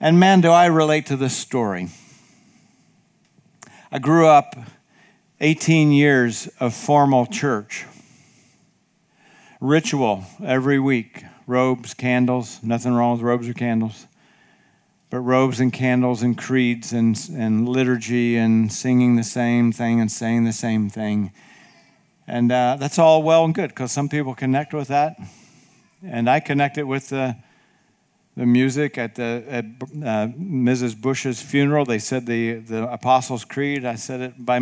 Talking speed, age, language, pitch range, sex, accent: 145 wpm, 50-69, English, 120-155 Hz, male, American